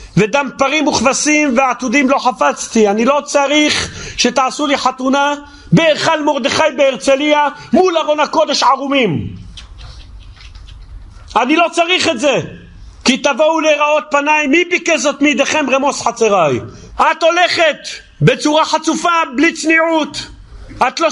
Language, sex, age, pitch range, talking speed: Hebrew, male, 40-59, 225-305 Hz, 120 wpm